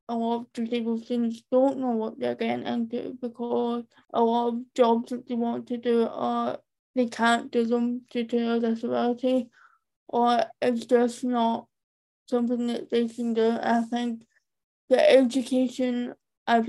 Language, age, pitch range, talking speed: English, 10-29, 230-250 Hz, 160 wpm